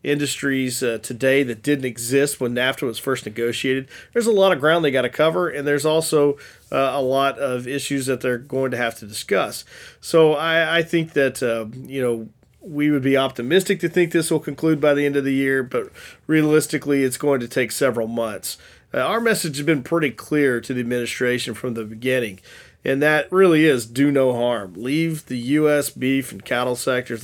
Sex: male